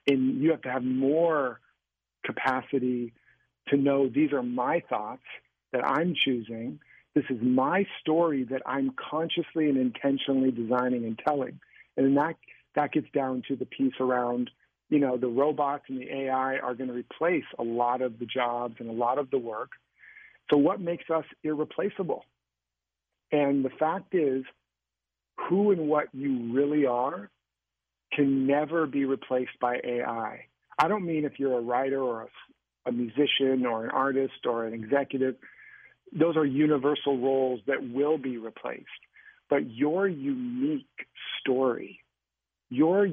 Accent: American